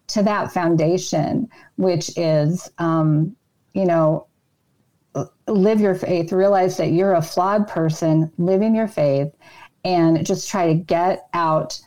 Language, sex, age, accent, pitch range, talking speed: English, female, 40-59, American, 160-195 Hz, 130 wpm